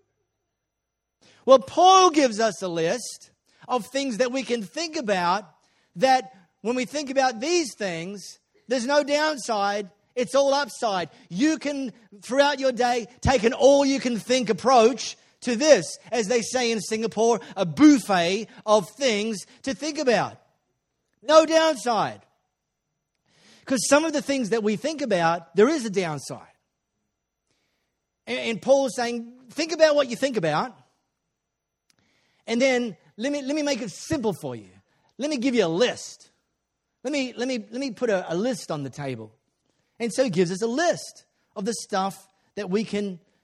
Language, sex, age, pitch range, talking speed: English, male, 40-59, 170-265 Hz, 160 wpm